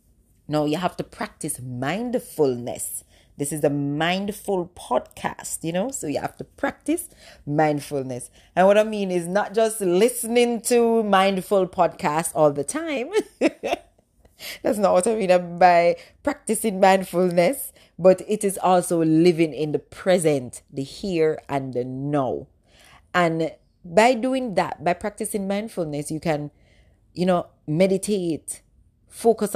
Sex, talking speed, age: female, 135 wpm, 30-49